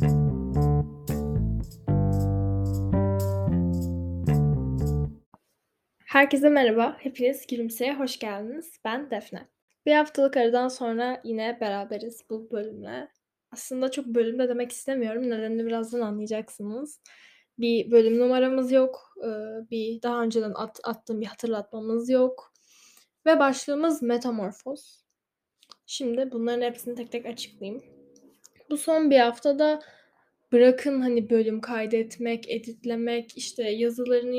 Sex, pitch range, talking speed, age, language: female, 225-265 Hz, 95 wpm, 10-29, Turkish